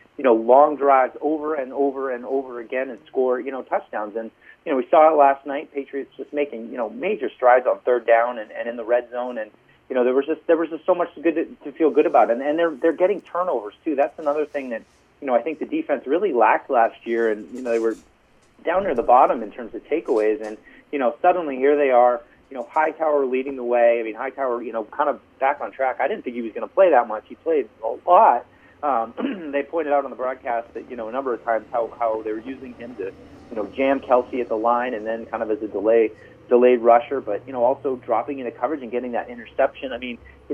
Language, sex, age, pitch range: English, male, 30-49, 115-145 Hz